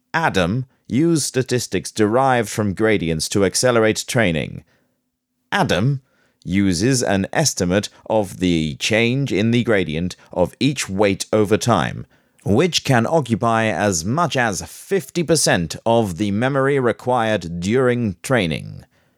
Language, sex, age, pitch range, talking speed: English, male, 30-49, 95-135 Hz, 115 wpm